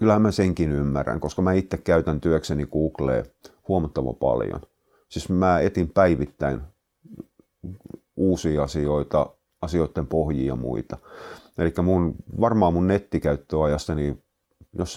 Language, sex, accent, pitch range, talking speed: Finnish, male, native, 75-90 Hz, 110 wpm